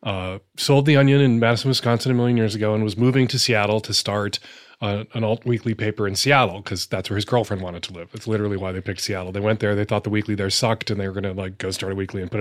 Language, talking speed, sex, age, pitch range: English, 285 wpm, male, 30-49, 105-130 Hz